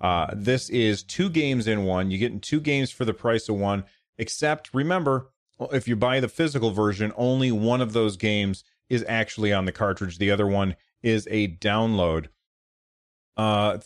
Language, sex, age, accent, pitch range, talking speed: English, male, 30-49, American, 100-130 Hz, 180 wpm